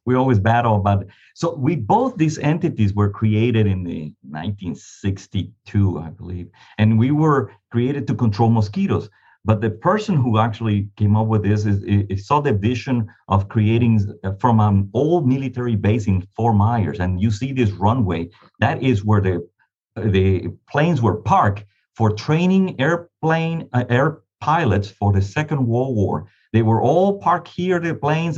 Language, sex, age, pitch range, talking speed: English, male, 40-59, 100-130 Hz, 165 wpm